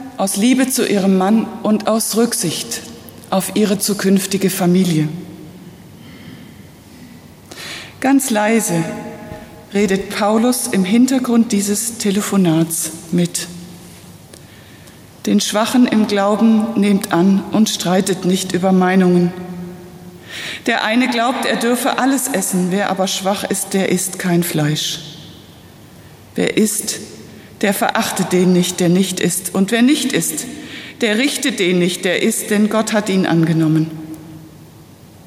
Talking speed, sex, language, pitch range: 120 wpm, female, German, 170-210 Hz